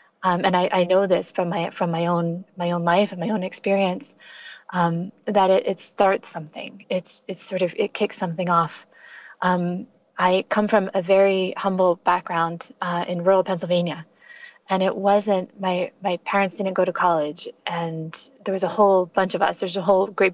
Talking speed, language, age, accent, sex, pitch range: 195 wpm, English, 20-39, American, female, 180-205 Hz